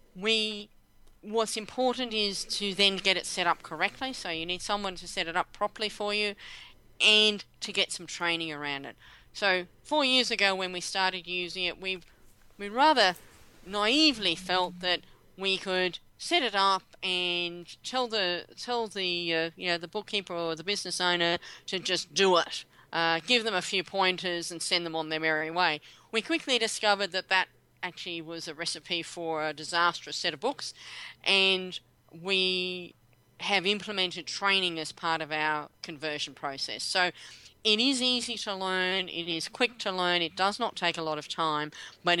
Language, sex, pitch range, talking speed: English, female, 165-210 Hz, 180 wpm